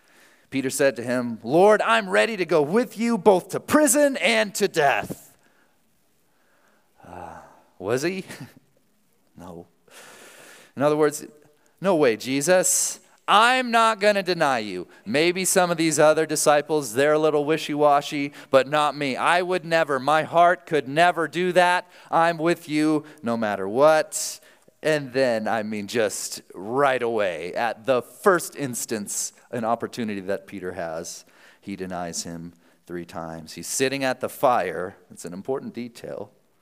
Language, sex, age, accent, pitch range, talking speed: English, male, 30-49, American, 100-170 Hz, 150 wpm